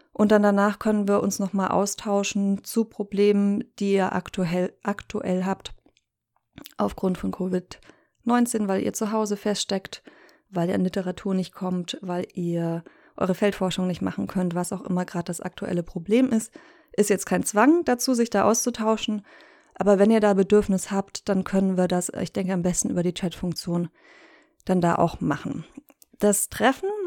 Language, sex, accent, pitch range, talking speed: German, female, German, 185-220 Hz, 165 wpm